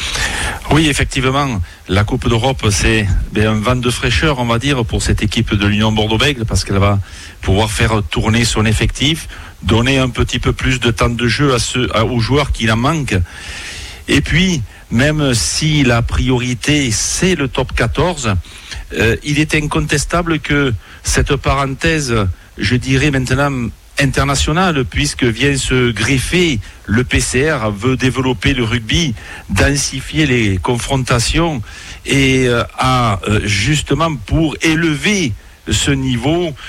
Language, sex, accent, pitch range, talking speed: French, male, French, 105-140 Hz, 135 wpm